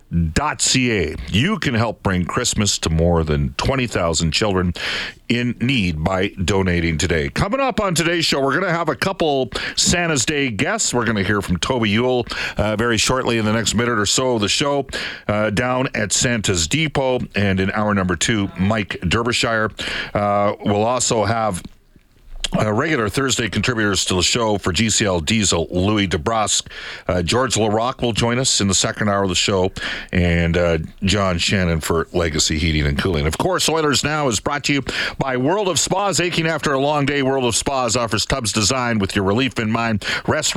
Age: 40-59